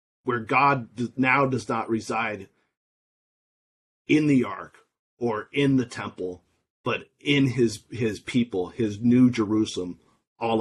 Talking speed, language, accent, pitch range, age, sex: 125 wpm, English, American, 100-125 Hz, 30-49, male